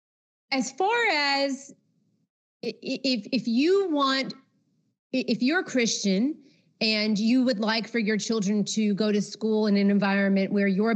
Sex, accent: female, American